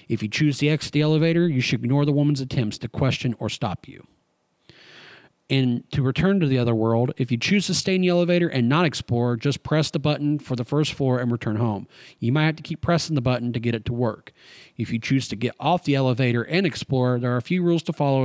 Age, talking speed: 40-59, 255 wpm